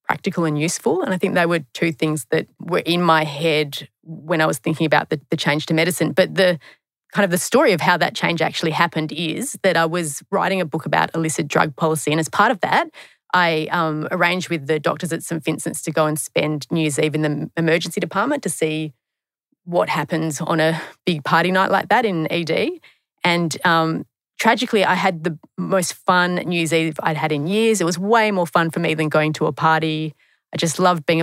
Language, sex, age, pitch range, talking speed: English, female, 30-49, 155-180 Hz, 225 wpm